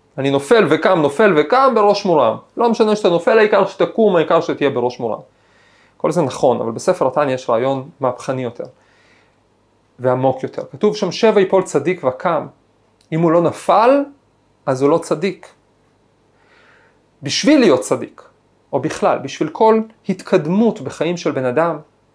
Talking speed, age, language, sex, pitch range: 150 wpm, 30-49, Hebrew, male, 140-200 Hz